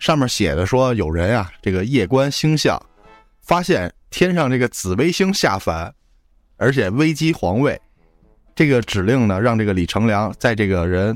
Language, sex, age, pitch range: Chinese, male, 20-39, 95-135 Hz